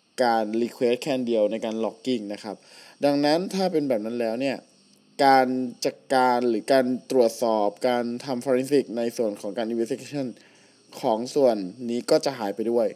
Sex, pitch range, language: male, 120-155 Hz, Thai